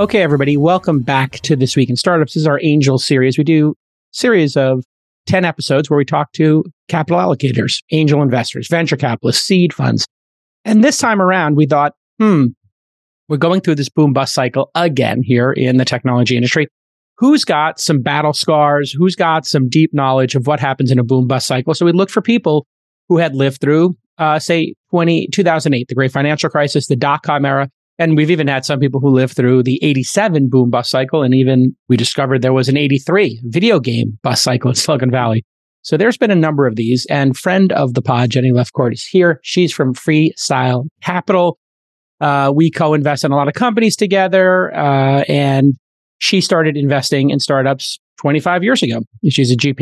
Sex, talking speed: male, 195 wpm